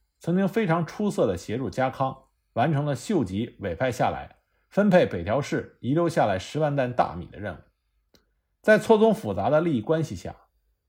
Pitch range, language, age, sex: 120-175 Hz, Chinese, 50-69, male